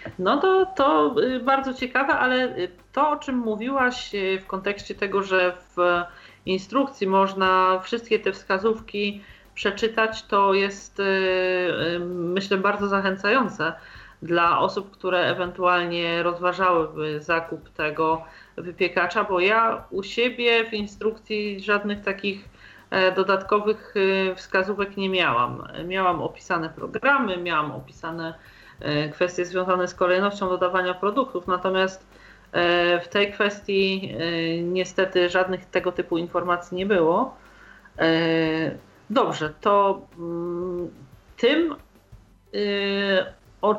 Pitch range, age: 175-205 Hz, 40-59